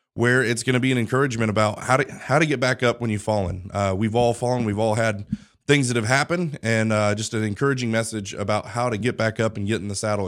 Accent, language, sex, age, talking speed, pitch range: American, English, male, 30-49, 270 wpm, 110-135 Hz